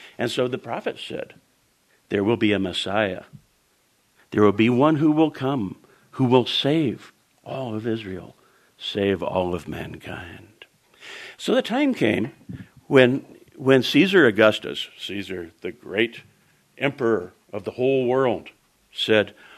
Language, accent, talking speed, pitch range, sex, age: English, American, 135 wpm, 100-150 Hz, male, 60-79